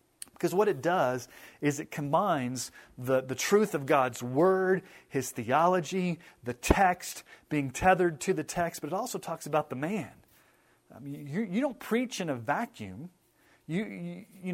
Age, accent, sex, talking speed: 40-59, American, male, 155 wpm